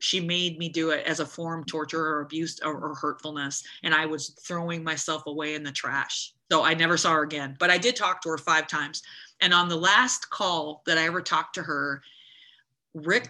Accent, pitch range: American, 155-180 Hz